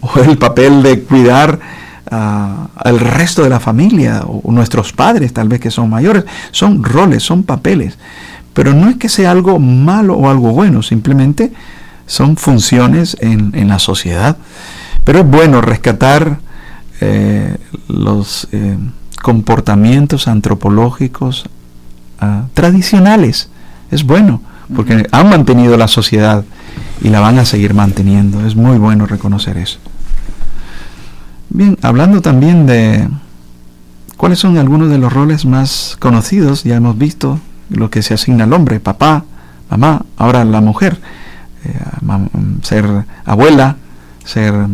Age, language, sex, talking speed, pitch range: 50-69, English, male, 130 wpm, 100-140 Hz